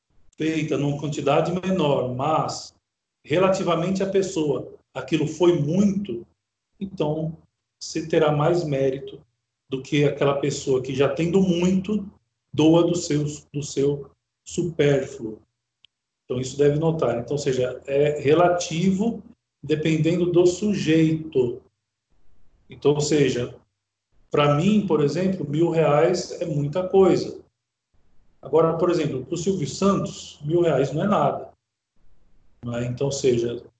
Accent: Brazilian